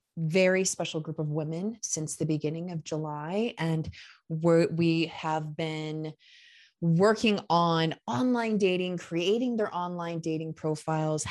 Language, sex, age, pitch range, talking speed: English, female, 20-39, 155-195 Hz, 120 wpm